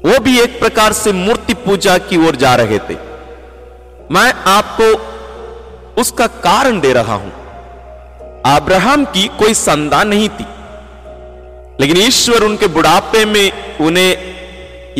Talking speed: 130 wpm